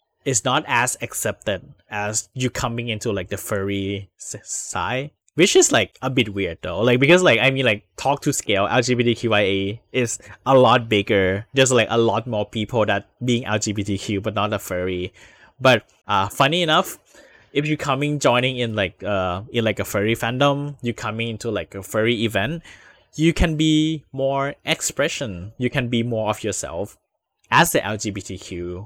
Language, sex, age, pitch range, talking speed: English, male, 10-29, 105-130 Hz, 175 wpm